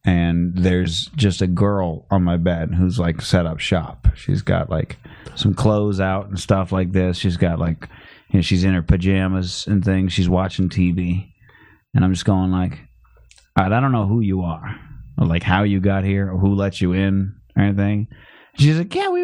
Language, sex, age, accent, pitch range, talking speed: English, male, 30-49, American, 95-130 Hz, 205 wpm